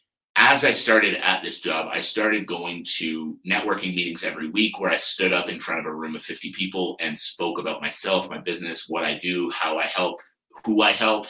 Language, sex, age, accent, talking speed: English, male, 30-49, American, 220 wpm